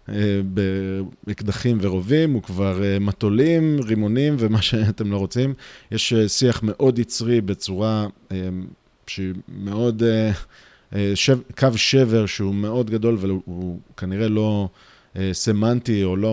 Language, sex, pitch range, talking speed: Hebrew, male, 95-125 Hz, 105 wpm